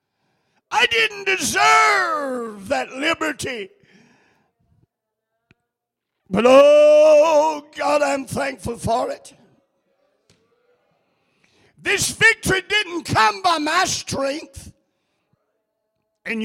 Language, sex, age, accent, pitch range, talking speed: English, male, 50-69, American, 225-335 Hz, 75 wpm